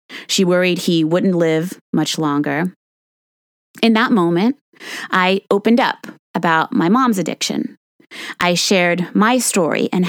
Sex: female